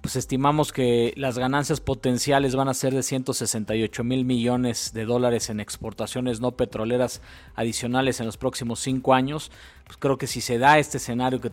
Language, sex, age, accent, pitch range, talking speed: Spanish, male, 40-59, Mexican, 115-140 Hz, 175 wpm